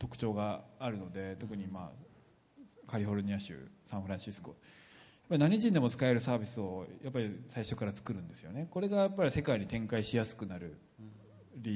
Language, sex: Japanese, male